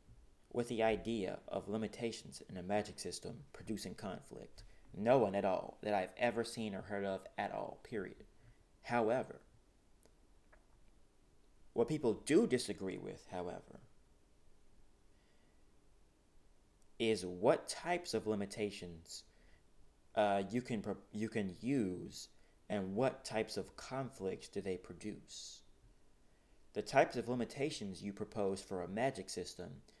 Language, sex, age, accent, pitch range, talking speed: English, male, 30-49, American, 95-115 Hz, 120 wpm